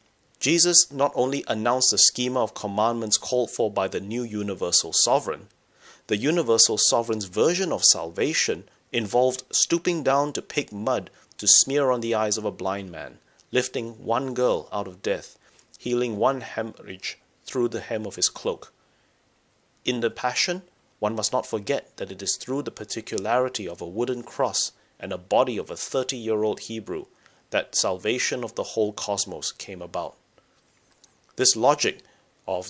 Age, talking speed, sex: 30-49, 160 wpm, male